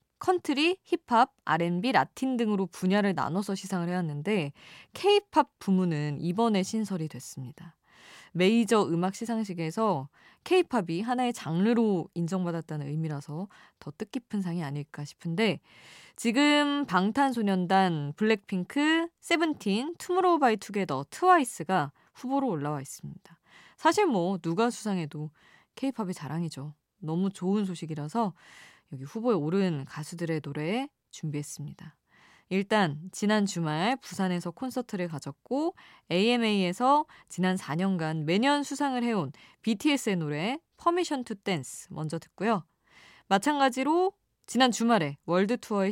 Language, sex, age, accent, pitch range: Korean, female, 20-39, native, 165-255 Hz